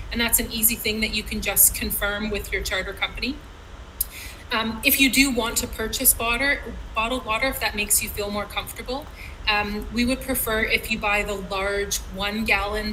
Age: 20-39